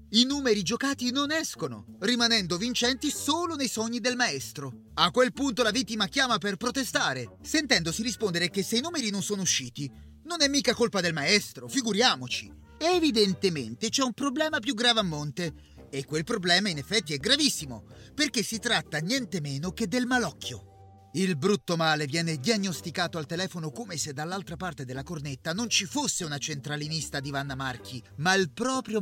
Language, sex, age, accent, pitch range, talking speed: Italian, male, 30-49, native, 155-245 Hz, 170 wpm